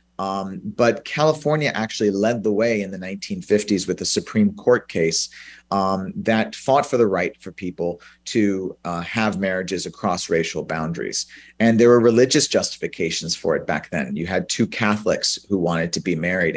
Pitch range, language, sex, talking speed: 90-115 Hz, English, male, 175 wpm